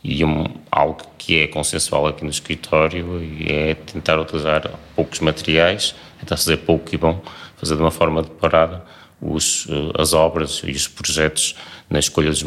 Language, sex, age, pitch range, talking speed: Portuguese, male, 30-49, 75-80 Hz, 165 wpm